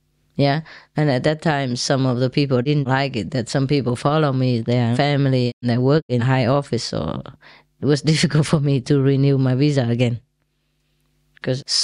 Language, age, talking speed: English, 20-39, 190 wpm